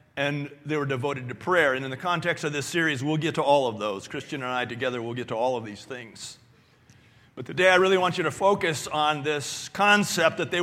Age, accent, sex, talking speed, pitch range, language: 40-59, American, male, 245 wpm, 125-160 Hz, English